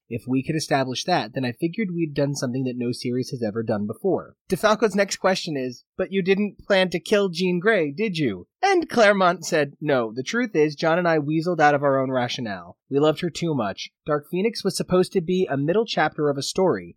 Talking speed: 230 wpm